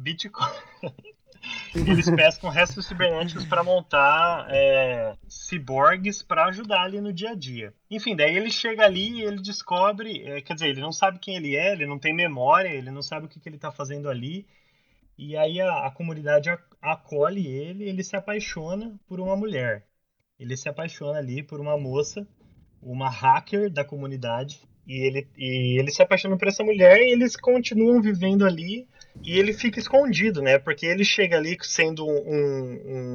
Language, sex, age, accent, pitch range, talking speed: Portuguese, male, 20-39, Brazilian, 135-195 Hz, 175 wpm